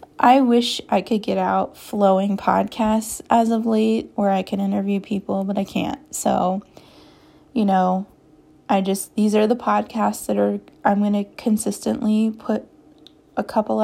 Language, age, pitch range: English, 20-39, 190-220 Hz